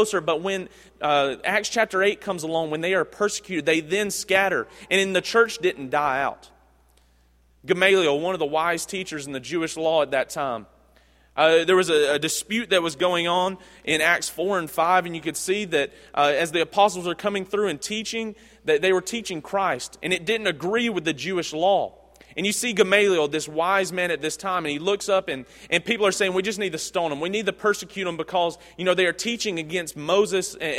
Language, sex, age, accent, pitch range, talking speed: English, male, 30-49, American, 155-195 Hz, 225 wpm